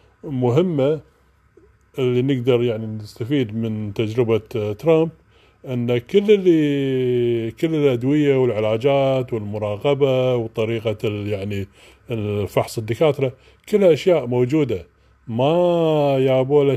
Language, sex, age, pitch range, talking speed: Arabic, male, 30-49, 115-150 Hz, 85 wpm